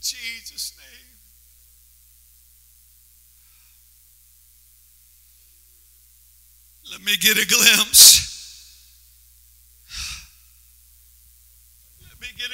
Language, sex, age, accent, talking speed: English, male, 60-79, American, 50 wpm